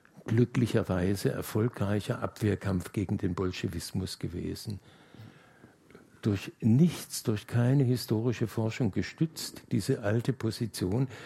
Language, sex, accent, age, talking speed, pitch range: German, male, German, 60-79, 90 wpm, 95-120 Hz